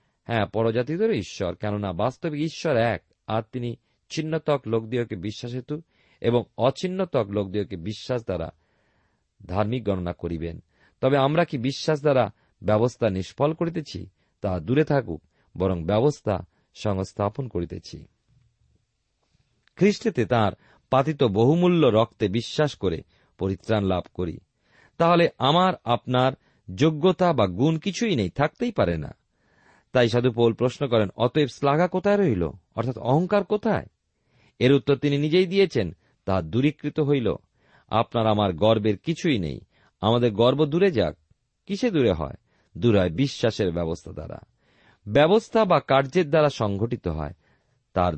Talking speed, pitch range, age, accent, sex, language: 125 wpm, 100-150 Hz, 40-59, native, male, Bengali